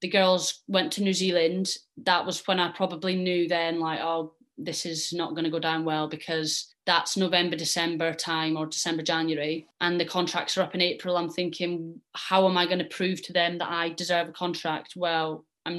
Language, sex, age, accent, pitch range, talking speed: English, female, 20-39, British, 170-185 Hz, 210 wpm